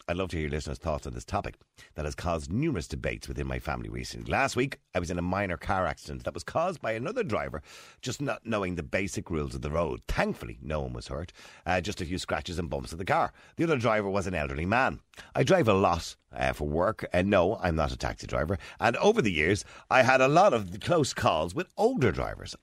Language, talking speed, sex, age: English, 245 wpm, male, 50-69